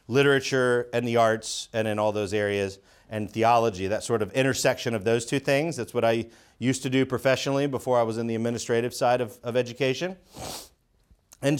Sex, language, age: male, English, 40-59